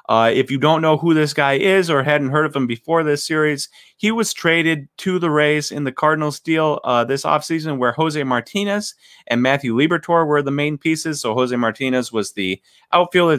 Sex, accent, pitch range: male, American, 115-150 Hz